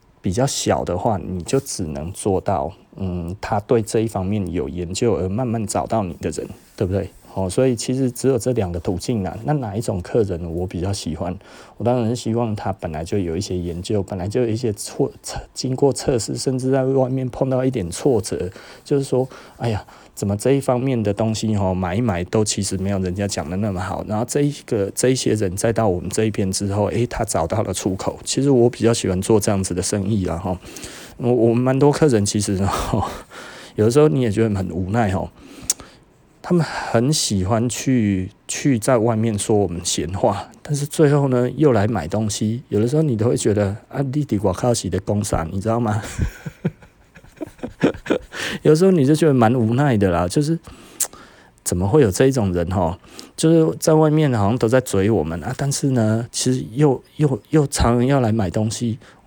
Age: 20-39